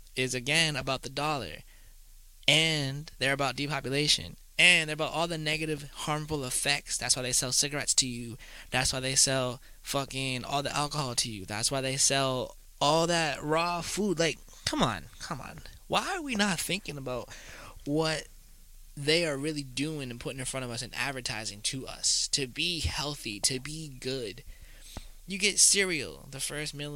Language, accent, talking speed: English, American, 180 wpm